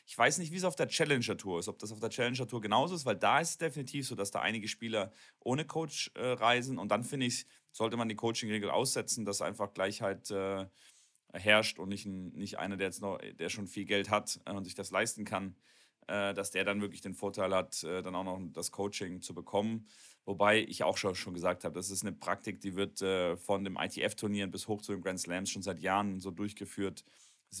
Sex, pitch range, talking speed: male, 100-115 Hz, 230 wpm